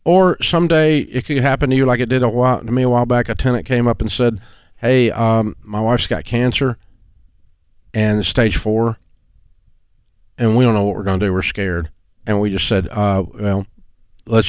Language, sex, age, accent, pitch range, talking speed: English, male, 50-69, American, 95-120 Hz, 210 wpm